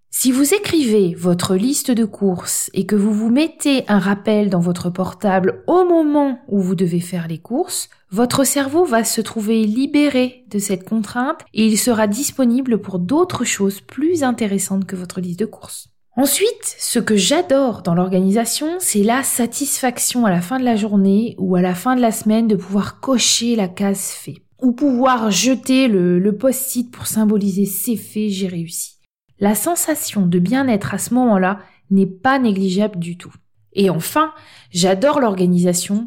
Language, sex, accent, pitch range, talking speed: French, female, French, 185-250 Hz, 175 wpm